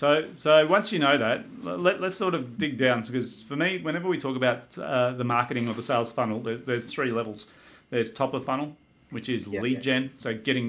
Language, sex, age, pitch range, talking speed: English, male, 30-49, 115-130 Hz, 225 wpm